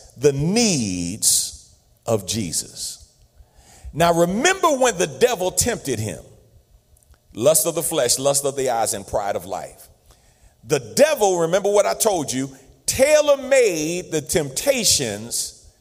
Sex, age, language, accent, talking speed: male, 40-59, English, American, 130 wpm